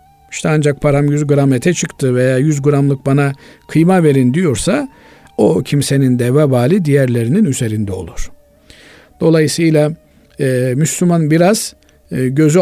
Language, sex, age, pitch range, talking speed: Turkish, male, 50-69, 135-180 Hz, 115 wpm